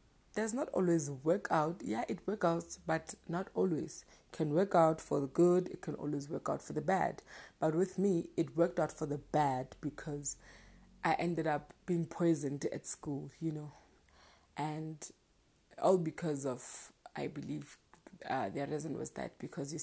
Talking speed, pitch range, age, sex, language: 175 wpm, 150-180 Hz, 30-49, female, English